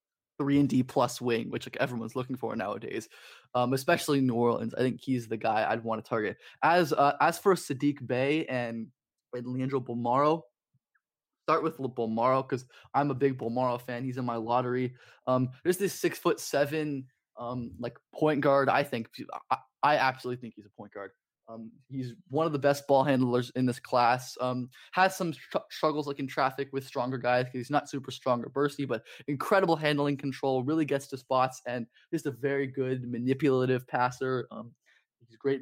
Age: 20-39